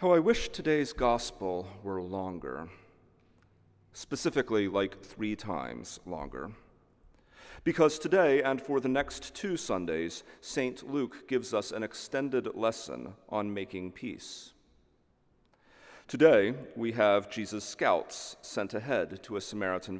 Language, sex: English, male